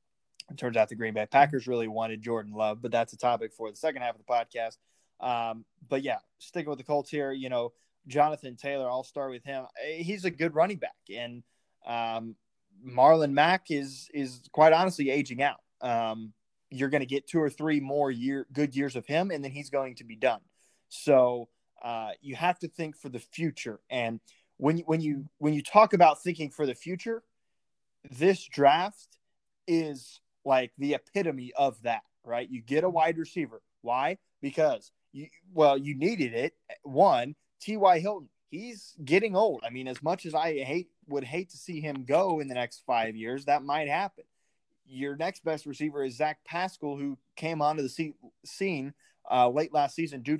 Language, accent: English, American